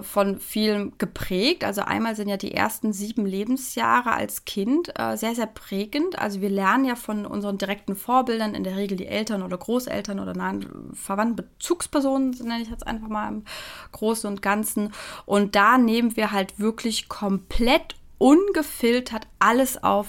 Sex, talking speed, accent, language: female, 165 wpm, German, German